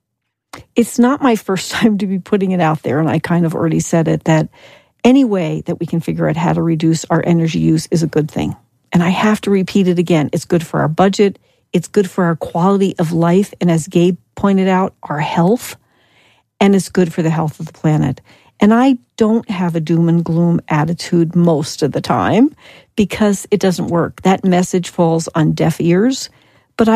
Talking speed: 210 wpm